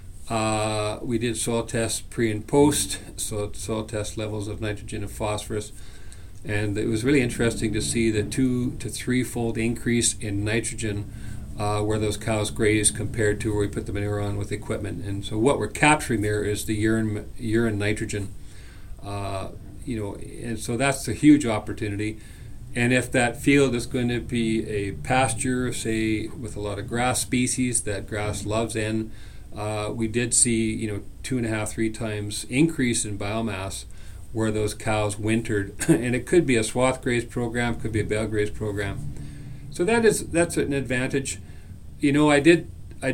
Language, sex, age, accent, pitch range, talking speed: English, male, 50-69, American, 105-125 Hz, 180 wpm